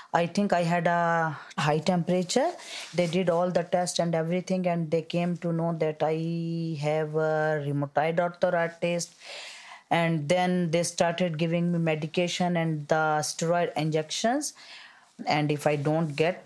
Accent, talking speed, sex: Indian, 150 wpm, female